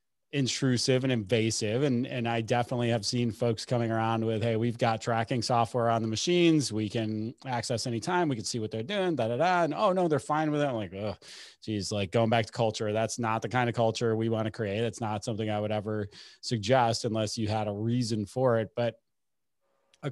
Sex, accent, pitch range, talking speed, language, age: male, American, 105-120 Hz, 225 wpm, English, 30-49